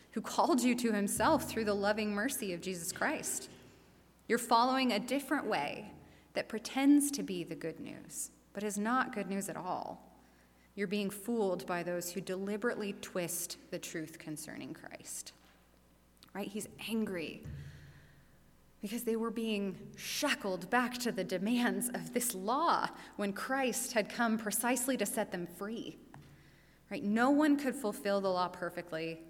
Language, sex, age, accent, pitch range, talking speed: English, female, 20-39, American, 175-220 Hz, 155 wpm